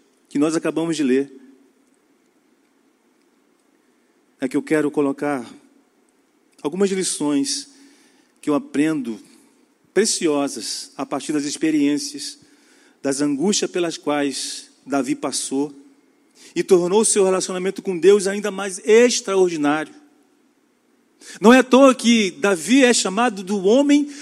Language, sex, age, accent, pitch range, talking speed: Portuguese, male, 40-59, Brazilian, 200-310 Hz, 115 wpm